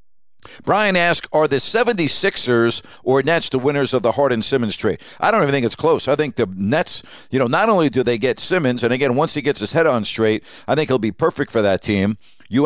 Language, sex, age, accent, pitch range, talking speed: English, male, 50-69, American, 120-160 Hz, 230 wpm